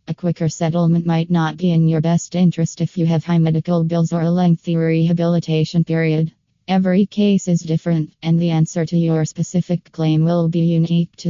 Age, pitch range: 20-39, 165-180 Hz